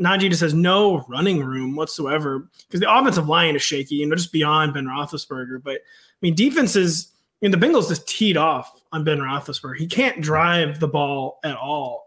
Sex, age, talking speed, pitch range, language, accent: male, 20-39, 205 wpm, 155-190 Hz, English, American